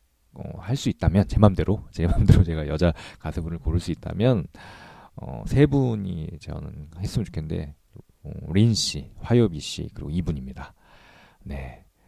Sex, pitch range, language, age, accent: male, 75-105 Hz, Korean, 40-59, native